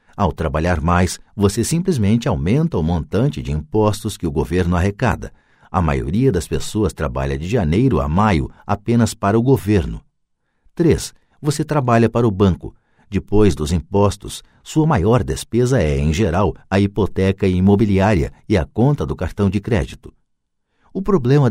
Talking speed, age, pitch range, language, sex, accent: 150 wpm, 60-79, 85-120 Hz, Portuguese, male, Brazilian